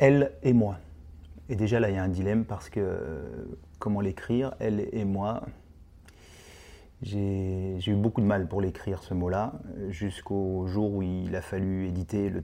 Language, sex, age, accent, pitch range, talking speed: French, male, 30-49, French, 80-110 Hz, 175 wpm